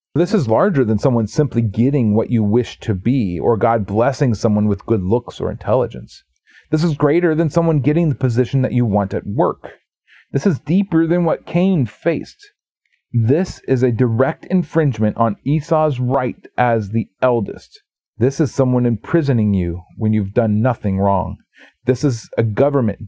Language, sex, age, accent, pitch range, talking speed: English, male, 40-59, American, 110-140 Hz, 170 wpm